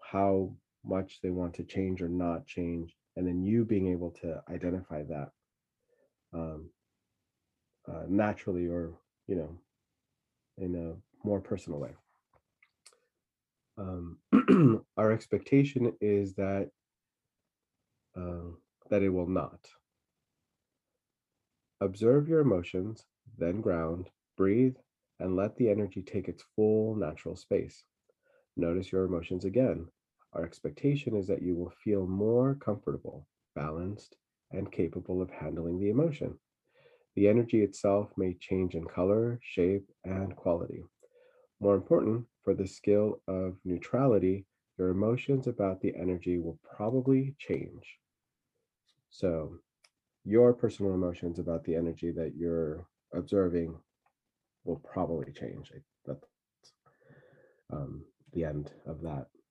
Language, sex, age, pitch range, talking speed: English, male, 30-49, 85-110 Hz, 120 wpm